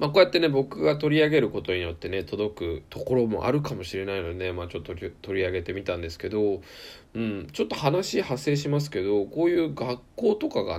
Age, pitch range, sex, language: 20-39, 85-120 Hz, male, Japanese